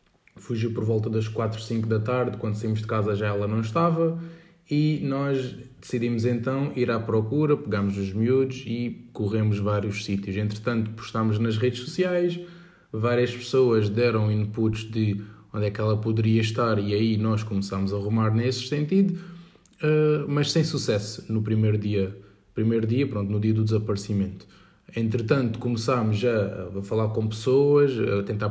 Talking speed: 160 wpm